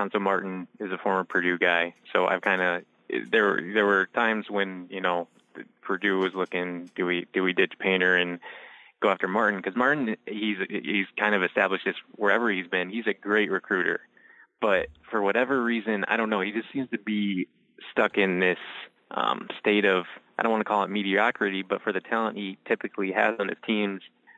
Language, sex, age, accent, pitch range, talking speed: English, male, 20-39, American, 90-105 Hz, 200 wpm